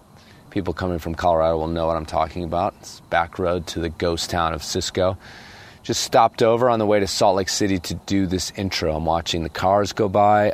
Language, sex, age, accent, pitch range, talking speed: English, male, 40-59, American, 90-110 Hz, 220 wpm